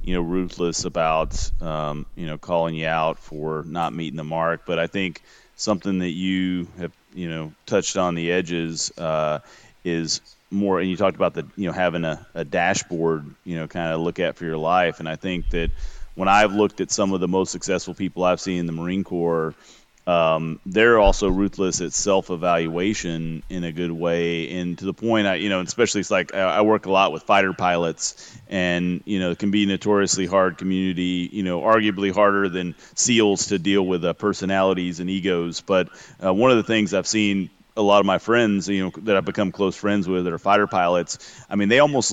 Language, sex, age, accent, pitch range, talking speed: English, male, 30-49, American, 85-100 Hz, 215 wpm